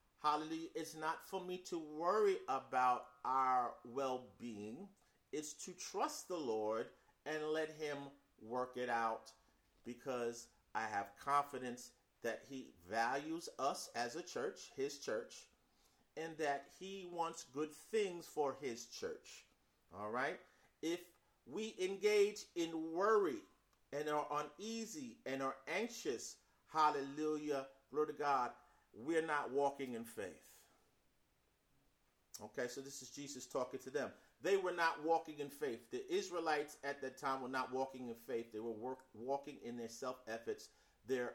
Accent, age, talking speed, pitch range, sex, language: American, 40-59, 140 wpm, 125-180 Hz, male, English